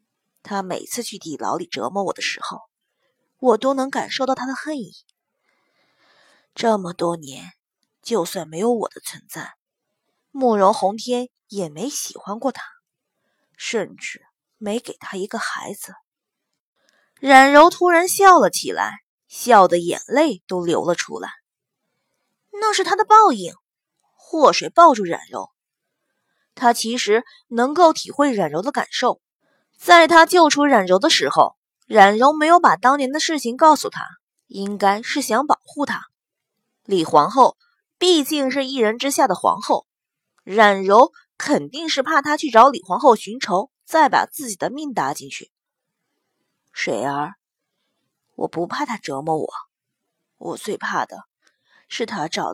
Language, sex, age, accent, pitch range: Chinese, female, 20-39, native, 205-305 Hz